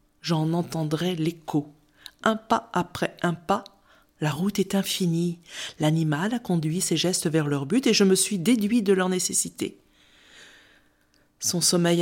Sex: female